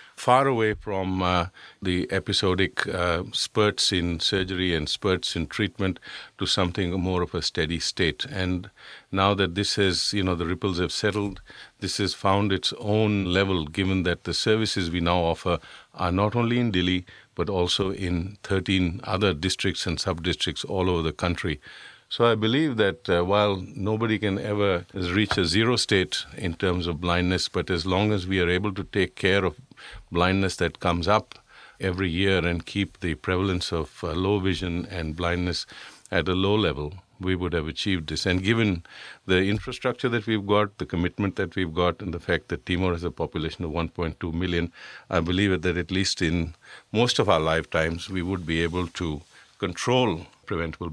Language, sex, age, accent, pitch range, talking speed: English, male, 50-69, Indian, 85-100 Hz, 185 wpm